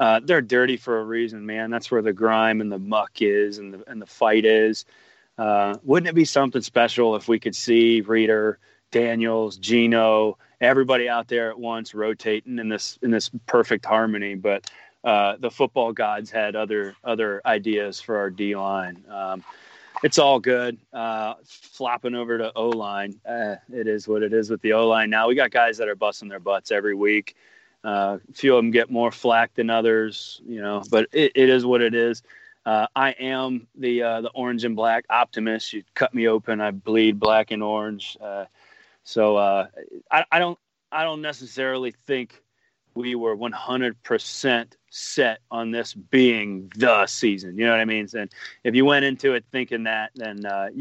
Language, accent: English, American